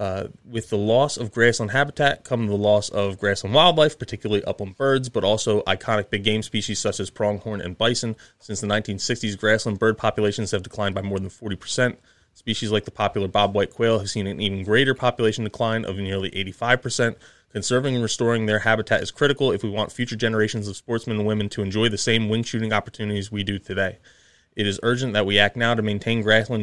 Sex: male